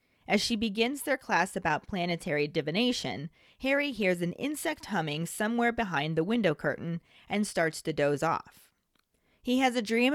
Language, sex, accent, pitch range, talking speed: English, female, American, 165-225 Hz, 160 wpm